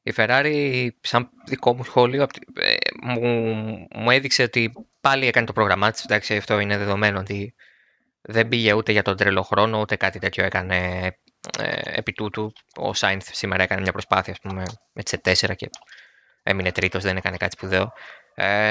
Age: 20-39